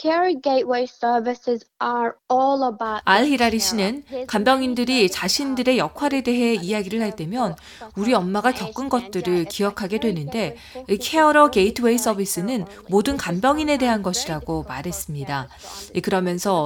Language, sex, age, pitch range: Korean, female, 30-49, 185-250 Hz